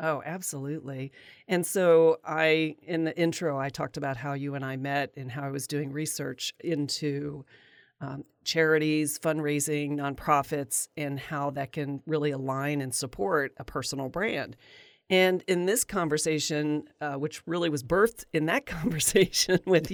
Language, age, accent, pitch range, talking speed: English, 40-59, American, 140-175 Hz, 155 wpm